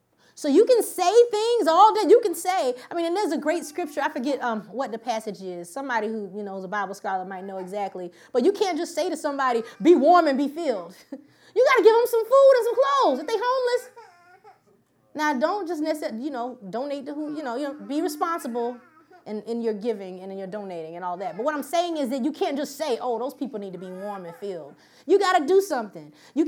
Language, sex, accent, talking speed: English, female, American, 250 wpm